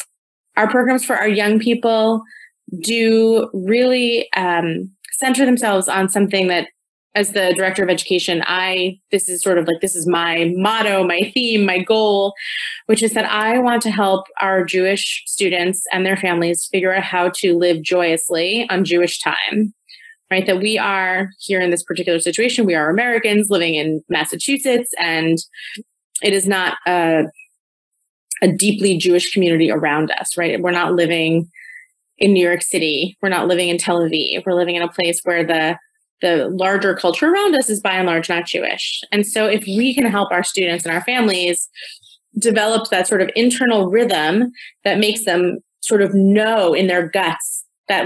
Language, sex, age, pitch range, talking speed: English, female, 30-49, 175-220 Hz, 175 wpm